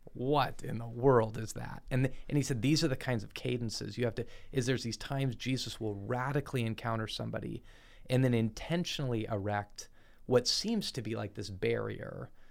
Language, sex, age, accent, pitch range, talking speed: English, male, 30-49, American, 105-125 Hz, 190 wpm